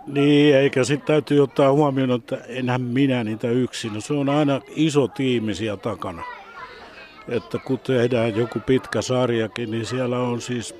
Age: 60-79